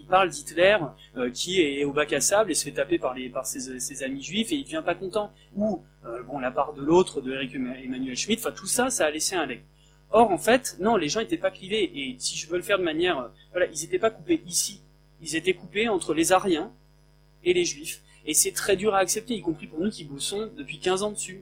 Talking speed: 265 wpm